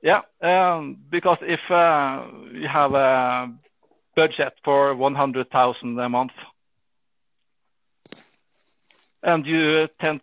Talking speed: 95 wpm